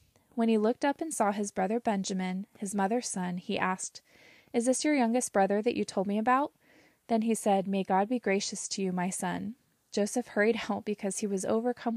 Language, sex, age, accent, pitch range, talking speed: English, female, 20-39, American, 190-230 Hz, 210 wpm